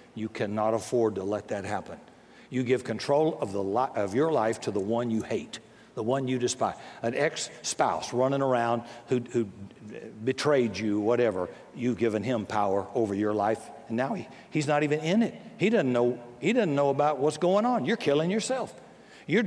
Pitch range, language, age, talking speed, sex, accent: 120-180 Hz, English, 60-79, 190 wpm, male, American